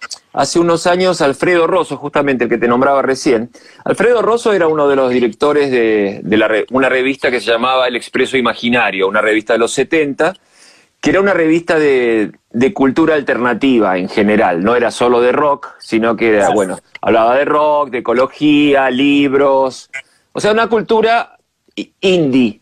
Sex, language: male, Spanish